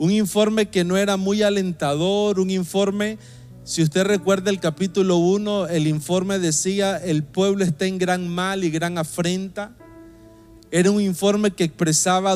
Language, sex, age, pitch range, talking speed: Spanish, male, 30-49, 160-195 Hz, 155 wpm